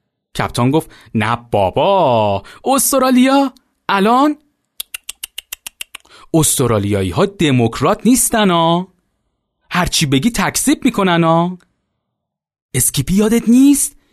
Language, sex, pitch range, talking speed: Persian, male, 150-235 Hz, 70 wpm